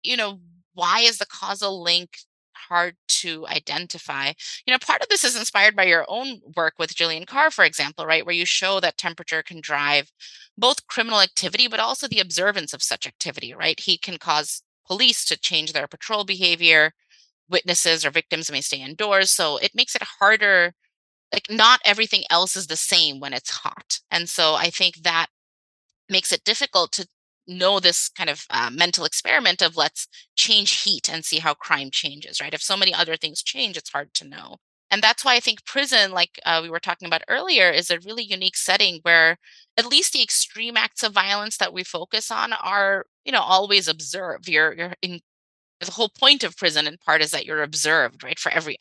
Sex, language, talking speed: female, English, 200 wpm